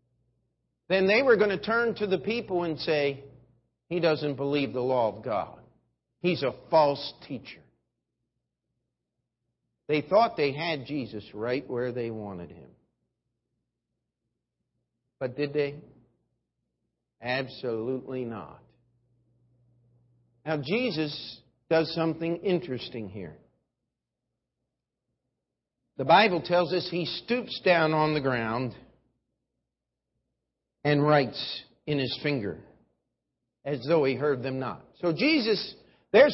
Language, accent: English, American